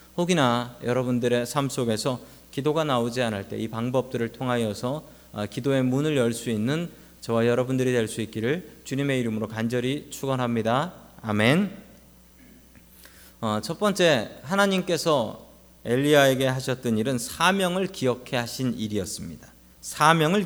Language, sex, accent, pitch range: Korean, male, native, 105-155 Hz